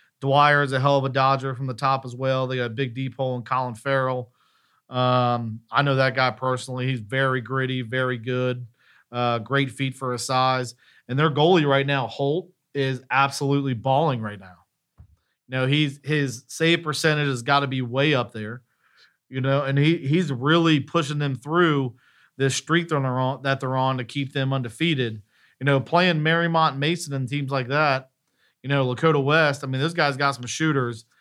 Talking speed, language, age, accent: 200 wpm, English, 40-59, American